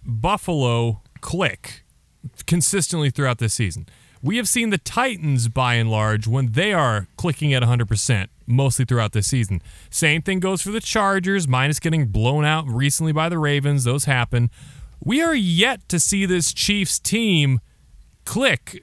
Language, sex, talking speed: English, male, 155 wpm